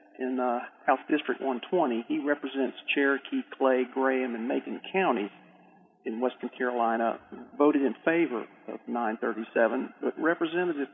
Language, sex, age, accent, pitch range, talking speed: English, male, 50-69, American, 130-165 Hz, 125 wpm